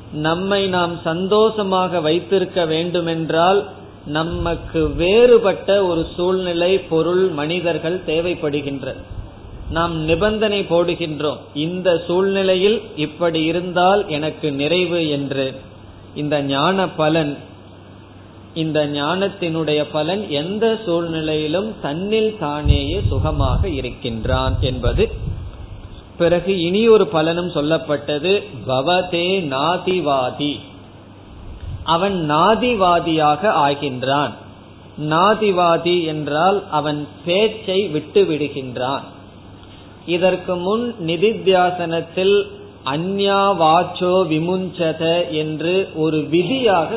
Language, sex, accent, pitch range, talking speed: Tamil, male, native, 140-185 Hz, 50 wpm